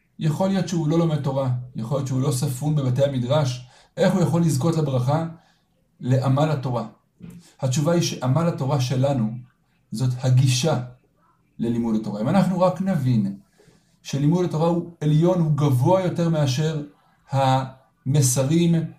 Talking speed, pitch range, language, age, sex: 135 wpm, 130-170 Hz, Hebrew, 60-79, male